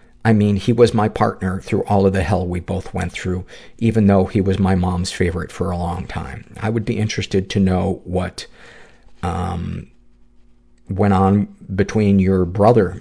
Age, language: 50-69, English